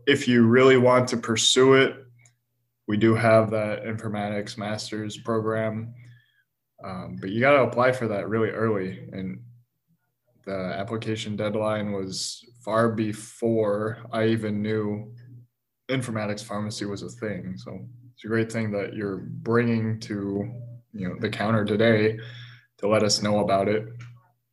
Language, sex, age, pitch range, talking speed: English, male, 20-39, 105-120 Hz, 145 wpm